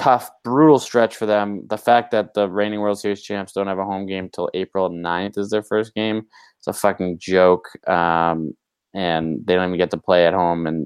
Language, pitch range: English, 90-105 Hz